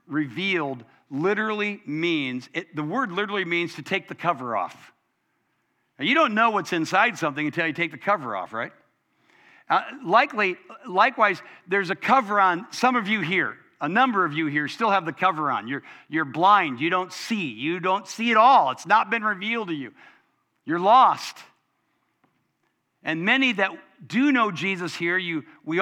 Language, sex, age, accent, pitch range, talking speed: English, male, 60-79, American, 170-240 Hz, 175 wpm